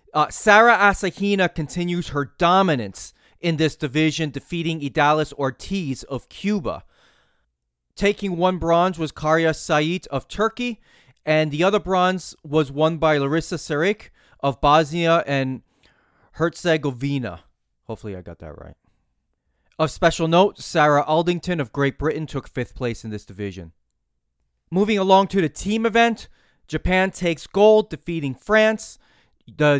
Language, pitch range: English, 135-180 Hz